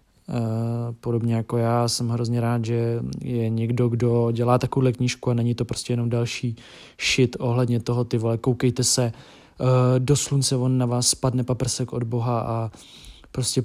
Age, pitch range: 20-39, 120-130 Hz